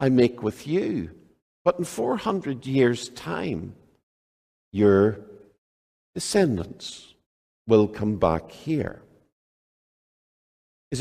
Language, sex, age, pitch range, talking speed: English, male, 60-79, 105-140 Hz, 85 wpm